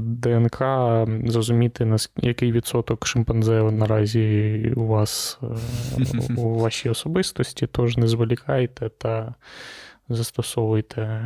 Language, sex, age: Ukrainian, male, 20-39